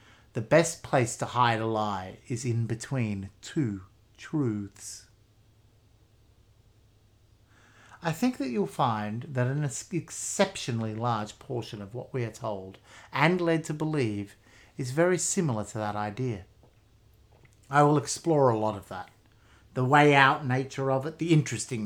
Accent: Australian